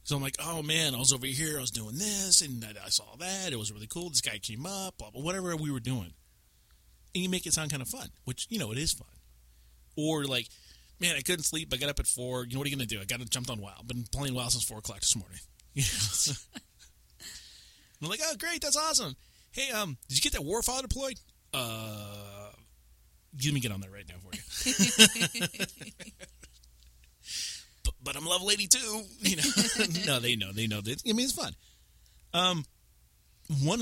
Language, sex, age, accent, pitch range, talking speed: English, male, 30-49, American, 105-150 Hz, 210 wpm